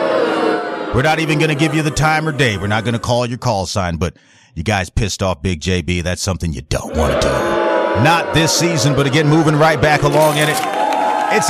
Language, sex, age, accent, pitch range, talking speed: English, male, 40-59, American, 110-150 Hz, 235 wpm